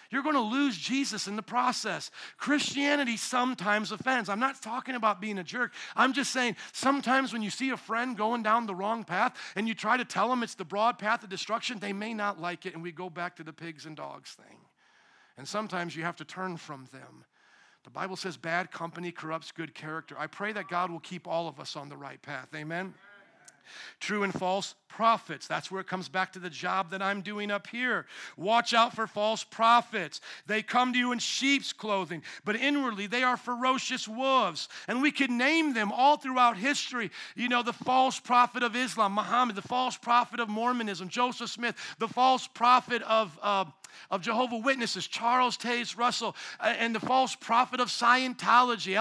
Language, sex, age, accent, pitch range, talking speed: English, male, 50-69, American, 195-255 Hz, 200 wpm